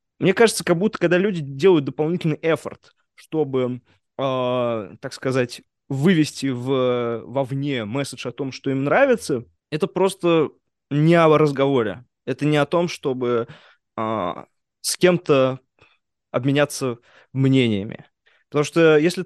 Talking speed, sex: 120 wpm, male